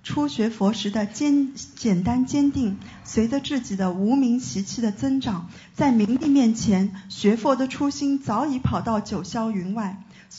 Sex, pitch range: female, 200-260 Hz